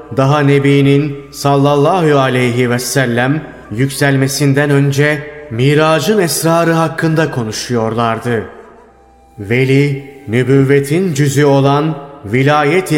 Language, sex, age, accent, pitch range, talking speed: Turkish, male, 30-49, native, 130-150 Hz, 80 wpm